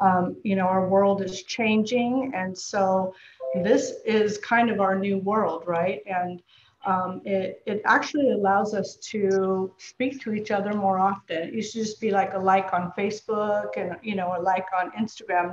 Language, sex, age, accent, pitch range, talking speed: English, female, 40-59, American, 195-235 Hz, 185 wpm